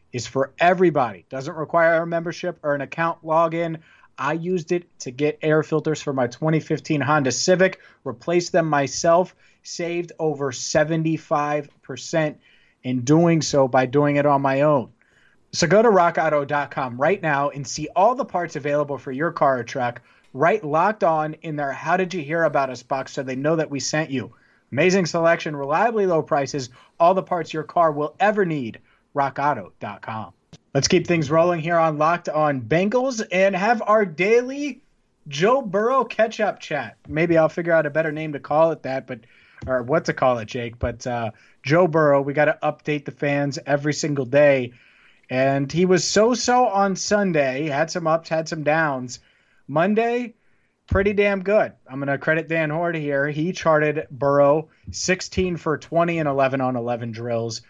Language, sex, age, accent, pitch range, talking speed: English, male, 30-49, American, 140-175 Hz, 180 wpm